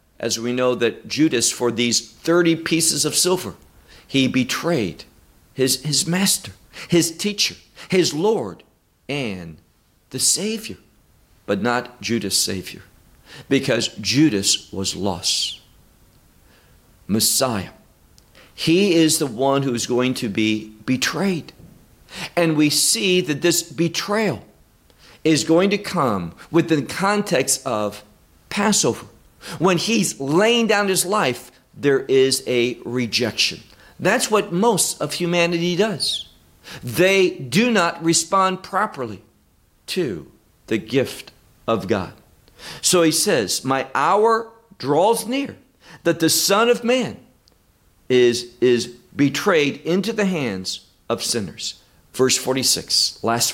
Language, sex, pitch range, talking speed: English, male, 120-185 Hz, 120 wpm